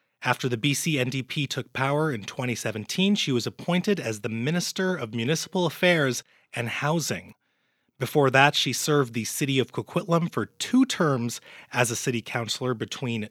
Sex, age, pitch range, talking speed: male, 30-49, 125-180 Hz, 160 wpm